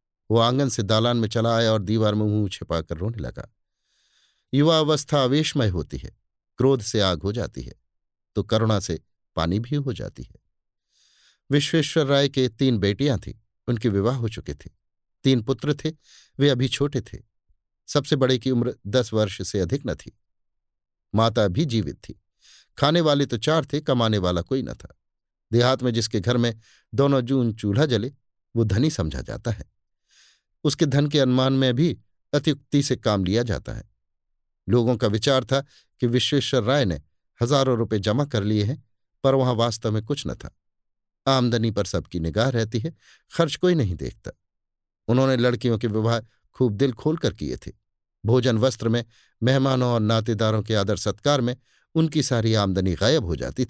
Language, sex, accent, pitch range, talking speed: Hindi, male, native, 105-135 Hz, 180 wpm